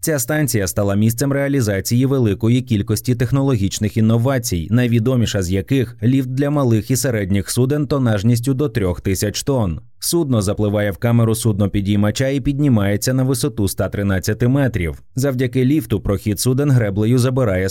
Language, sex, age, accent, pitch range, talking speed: Ukrainian, male, 20-39, native, 100-135 Hz, 140 wpm